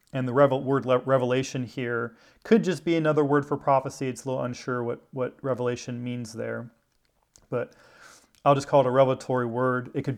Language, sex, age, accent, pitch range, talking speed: English, male, 30-49, American, 125-145 Hz, 185 wpm